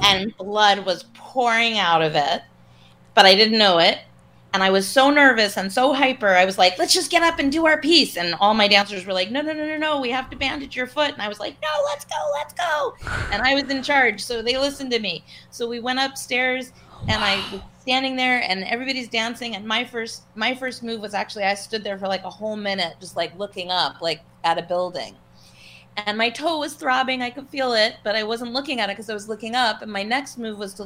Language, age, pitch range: English, 30-49, 190-255 Hz